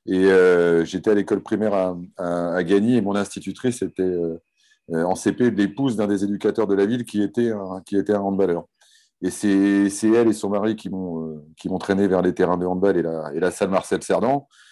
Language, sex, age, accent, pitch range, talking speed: French, male, 30-49, French, 85-100 Hz, 230 wpm